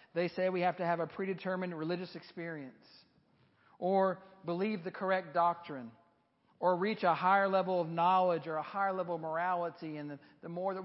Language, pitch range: English, 165-200 Hz